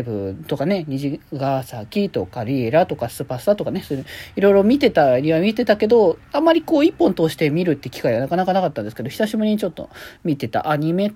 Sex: male